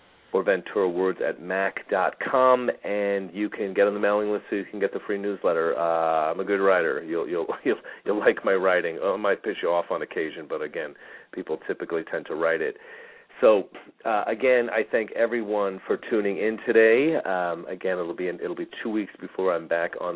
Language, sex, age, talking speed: English, male, 40-59, 210 wpm